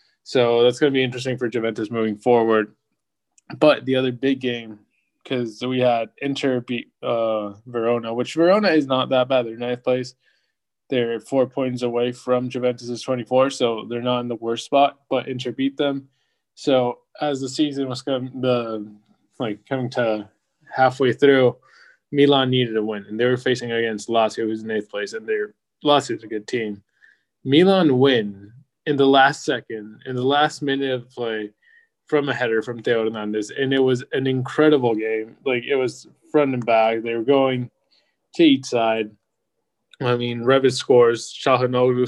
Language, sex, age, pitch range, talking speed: English, male, 20-39, 115-135 Hz, 170 wpm